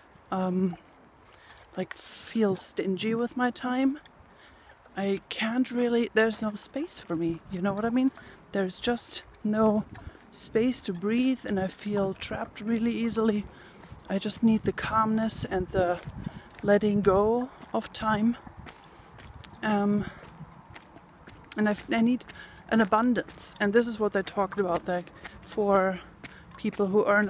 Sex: female